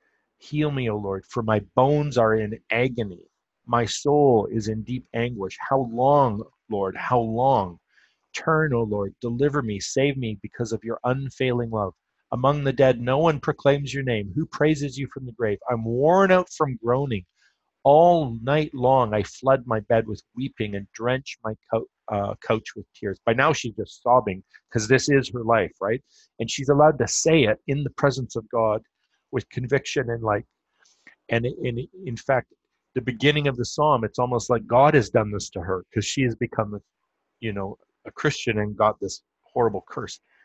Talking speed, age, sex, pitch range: 185 wpm, 40-59, male, 110-140 Hz